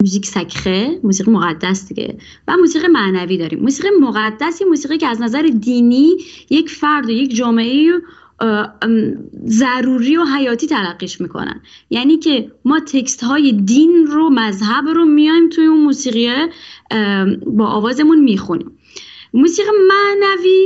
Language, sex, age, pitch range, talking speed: Persian, female, 20-39, 220-320 Hz, 130 wpm